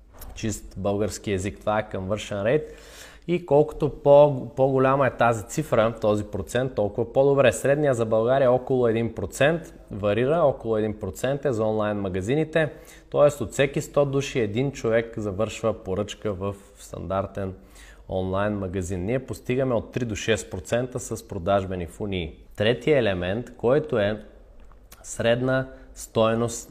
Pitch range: 100-130 Hz